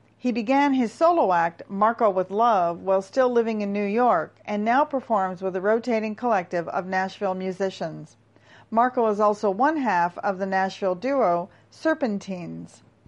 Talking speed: 155 wpm